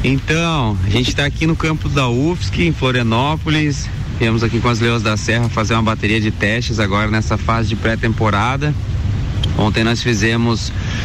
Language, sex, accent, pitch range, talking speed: Portuguese, male, Brazilian, 105-125 Hz, 170 wpm